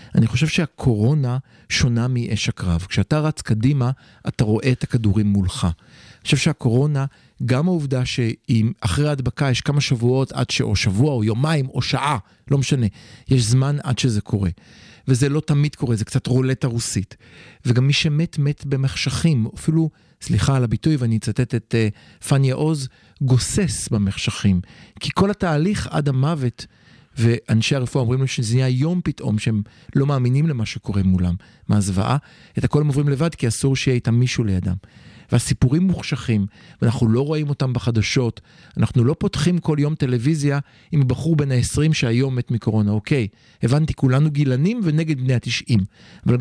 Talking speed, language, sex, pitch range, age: 160 wpm, Hebrew, male, 110-145 Hz, 40-59